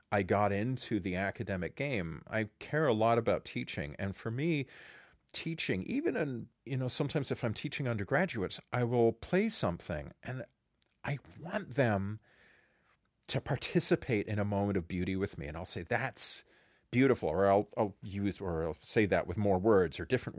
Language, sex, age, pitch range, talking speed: English, male, 40-59, 100-140 Hz, 175 wpm